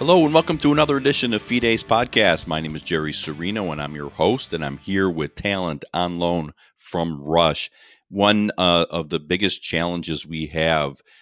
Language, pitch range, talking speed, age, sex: English, 75-90 Hz, 195 wpm, 40-59, male